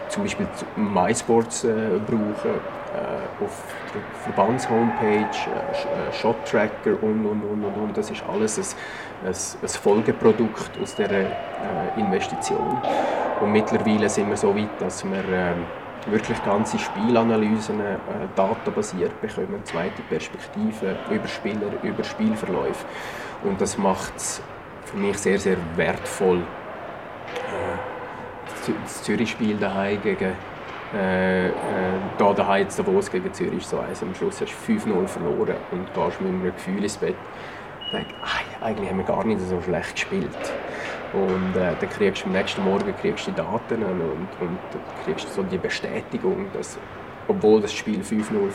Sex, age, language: male, 30-49, German